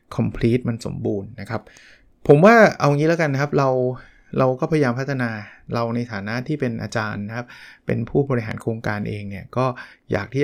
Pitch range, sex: 110-130 Hz, male